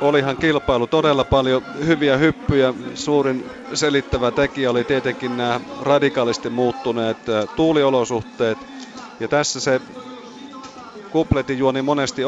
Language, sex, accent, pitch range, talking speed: Finnish, male, native, 115-145 Hz, 100 wpm